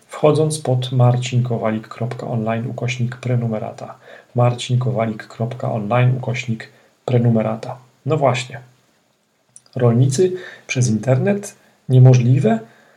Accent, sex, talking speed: native, male, 65 wpm